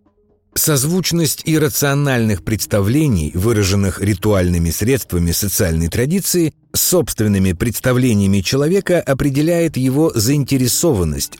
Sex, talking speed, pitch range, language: male, 75 wpm, 90-145 Hz, Russian